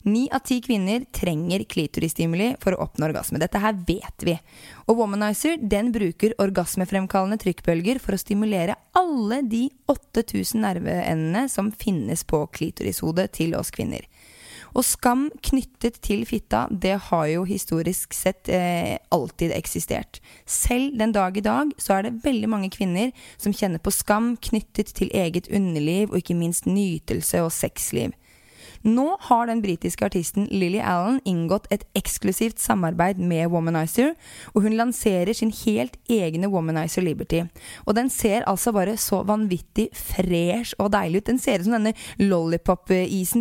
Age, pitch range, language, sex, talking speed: 20-39, 190-240 Hz, English, female, 150 wpm